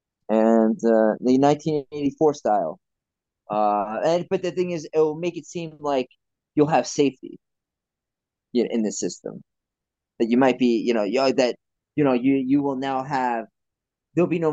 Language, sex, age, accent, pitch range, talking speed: English, male, 20-39, American, 115-155 Hz, 180 wpm